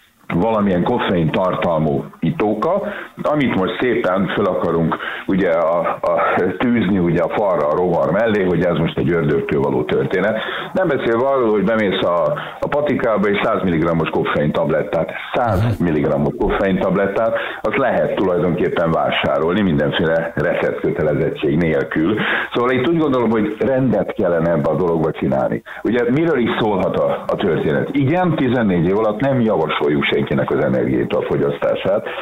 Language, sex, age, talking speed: Hungarian, male, 50-69, 140 wpm